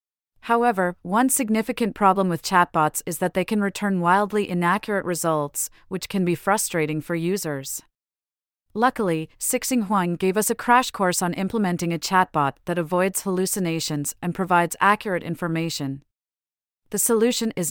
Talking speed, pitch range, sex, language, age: 140 wpm, 165-200 Hz, female, English, 30-49